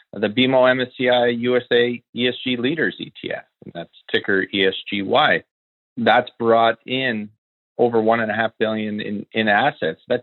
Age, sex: 40-59, male